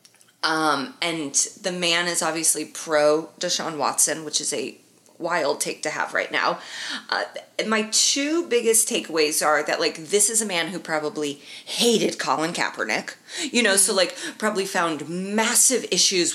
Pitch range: 165-215 Hz